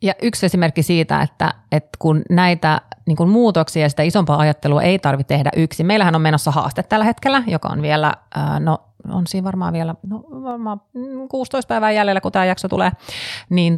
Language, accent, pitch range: Finnish, native, 150-195 Hz